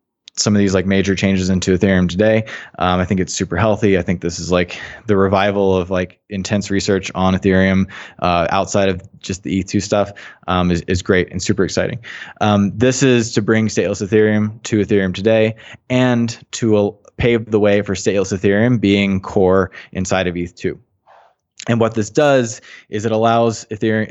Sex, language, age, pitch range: male, Dutch, 20-39, 95-115 Hz